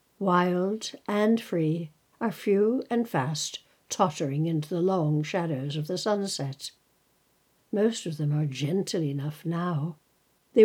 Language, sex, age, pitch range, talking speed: English, female, 60-79, 155-205 Hz, 130 wpm